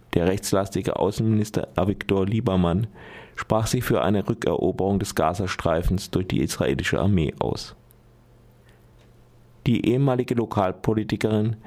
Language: German